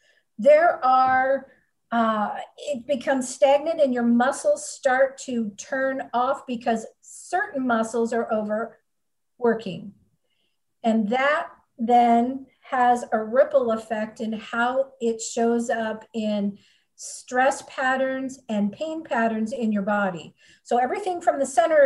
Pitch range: 225-275 Hz